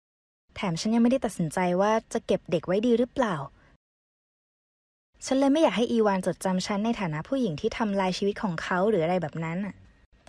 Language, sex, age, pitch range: Thai, female, 20-39, 185-235 Hz